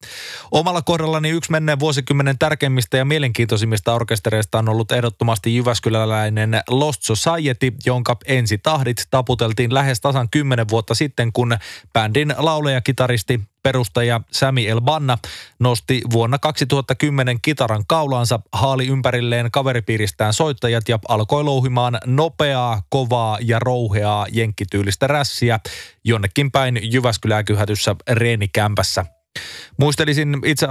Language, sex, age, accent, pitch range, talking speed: Finnish, male, 20-39, native, 115-135 Hz, 105 wpm